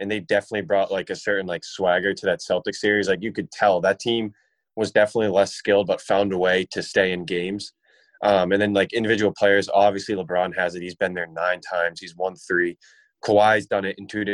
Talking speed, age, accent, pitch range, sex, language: 225 wpm, 20-39, American, 95-105 Hz, male, English